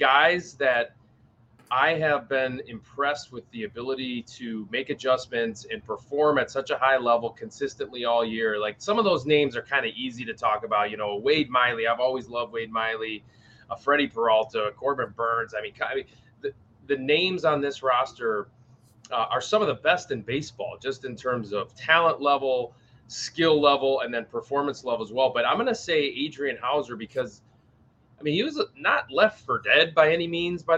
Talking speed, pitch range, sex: 195 wpm, 120-160 Hz, male